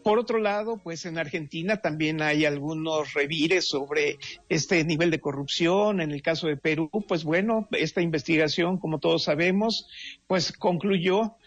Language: English